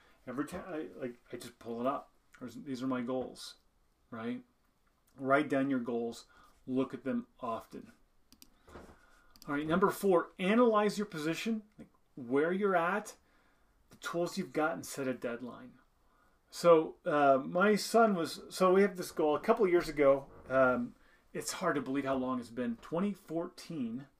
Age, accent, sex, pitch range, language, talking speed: 30-49, American, male, 130-175 Hz, English, 160 wpm